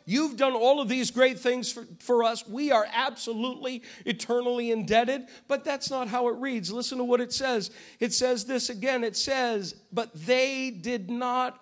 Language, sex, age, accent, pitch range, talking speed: English, male, 50-69, American, 195-250 Hz, 185 wpm